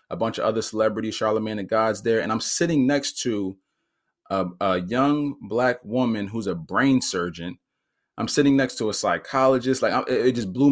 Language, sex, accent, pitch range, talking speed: English, male, American, 100-130 Hz, 190 wpm